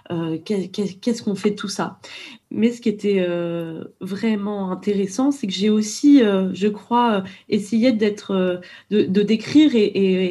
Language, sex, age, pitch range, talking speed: French, female, 20-39, 180-230 Hz, 165 wpm